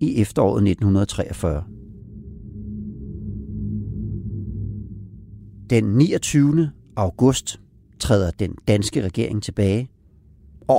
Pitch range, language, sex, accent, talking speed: 95-125 Hz, Danish, male, native, 65 wpm